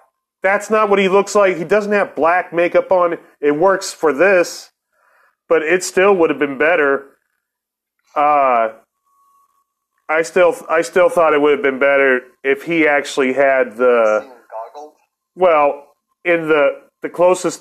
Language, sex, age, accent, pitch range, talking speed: English, male, 30-49, American, 145-195 Hz, 150 wpm